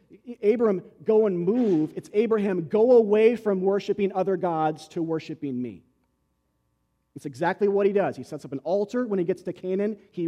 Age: 40-59